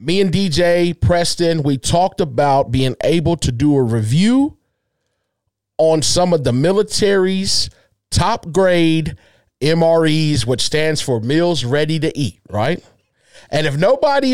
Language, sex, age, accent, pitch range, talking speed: English, male, 40-59, American, 125-180 Hz, 135 wpm